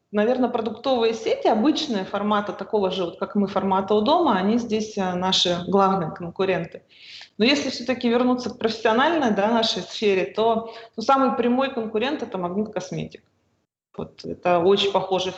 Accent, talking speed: native, 150 wpm